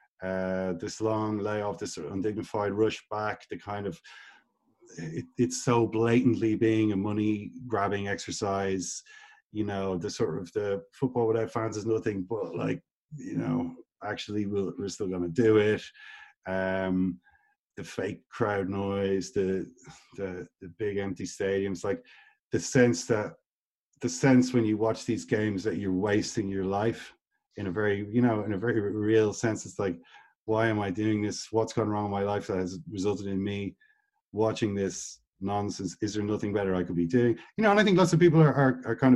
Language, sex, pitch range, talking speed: English, male, 100-125 Hz, 180 wpm